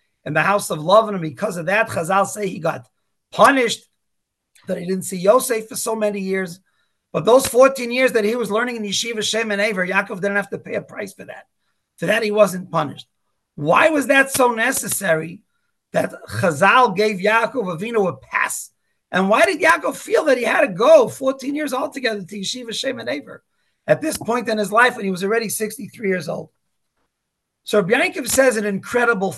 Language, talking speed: English, 200 wpm